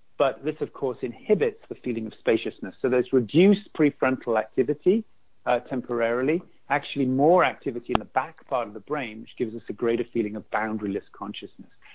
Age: 40-59